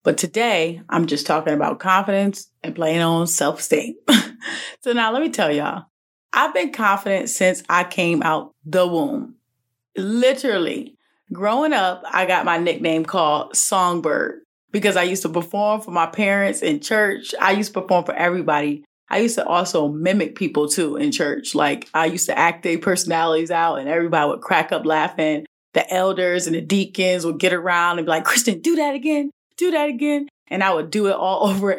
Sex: female